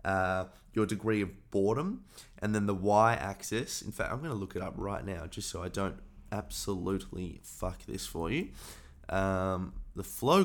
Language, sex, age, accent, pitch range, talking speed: English, male, 20-39, Australian, 95-110 Hz, 180 wpm